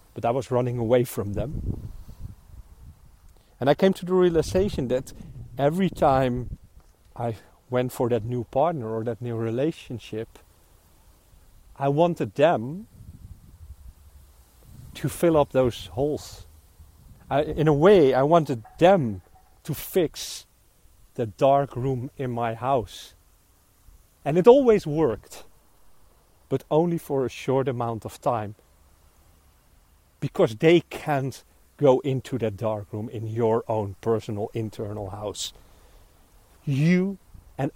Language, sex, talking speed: English, male, 120 wpm